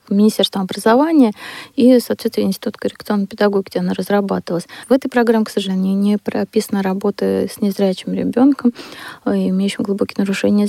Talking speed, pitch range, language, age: 135 wpm, 190-225 Hz, Russian, 20-39